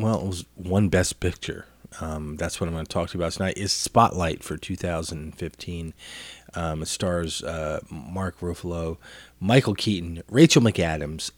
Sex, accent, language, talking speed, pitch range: male, American, English, 165 wpm, 80-105 Hz